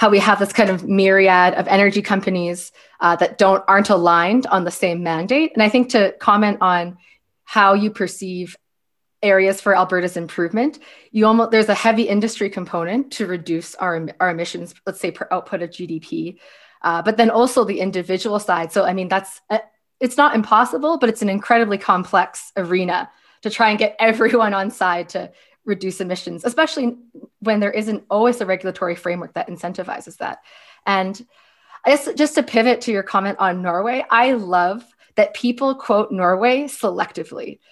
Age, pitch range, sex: 20-39, 185-225 Hz, female